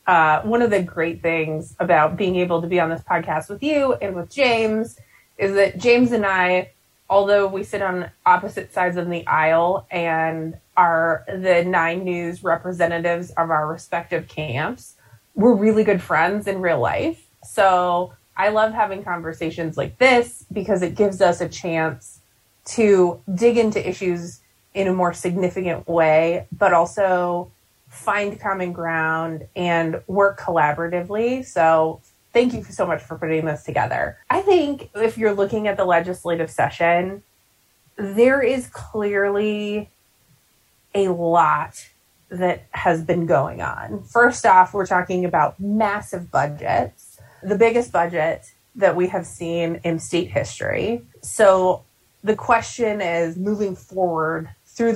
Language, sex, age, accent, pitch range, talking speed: English, female, 20-39, American, 165-200 Hz, 145 wpm